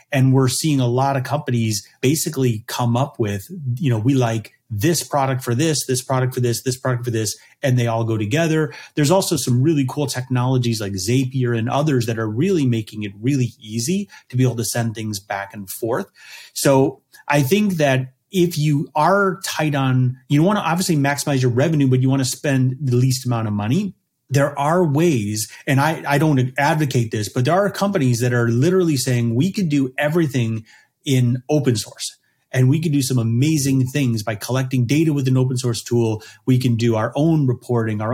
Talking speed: 205 wpm